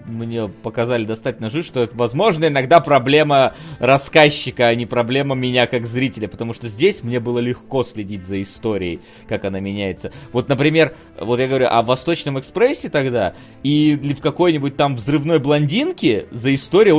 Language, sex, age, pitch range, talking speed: Russian, male, 20-39, 120-155 Hz, 160 wpm